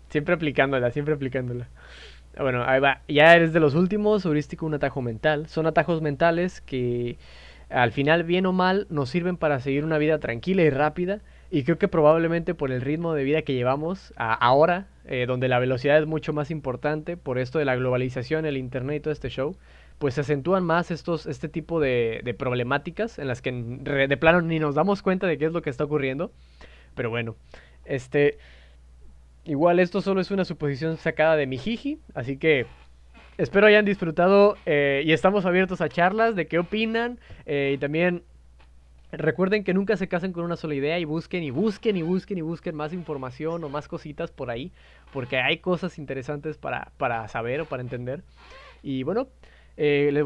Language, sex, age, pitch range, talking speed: Spanish, male, 20-39, 130-180 Hz, 190 wpm